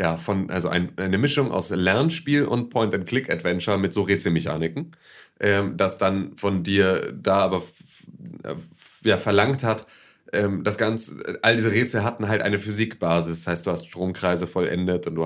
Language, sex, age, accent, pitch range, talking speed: German, male, 30-49, German, 85-105 Hz, 170 wpm